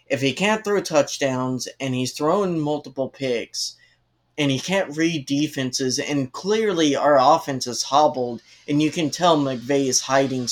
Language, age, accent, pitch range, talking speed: English, 20-39, American, 120-145 Hz, 160 wpm